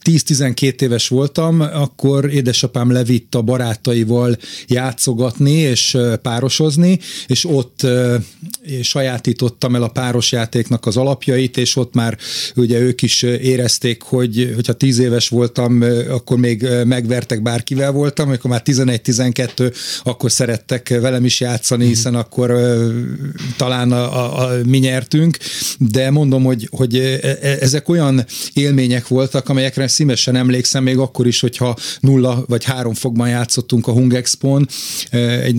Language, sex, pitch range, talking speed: Hungarian, male, 120-135 Hz, 135 wpm